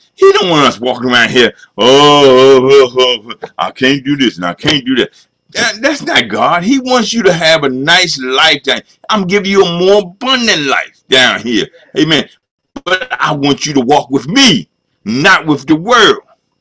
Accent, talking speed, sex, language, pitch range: American, 200 wpm, male, English, 130-200 Hz